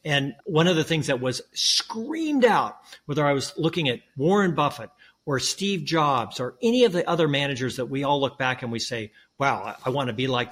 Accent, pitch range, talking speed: American, 120-150 Hz, 220 wpm